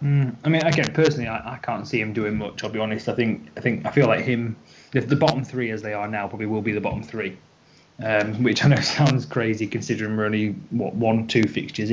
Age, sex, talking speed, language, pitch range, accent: 20-39, male, 250 wpm, English, 105-125 Hz, British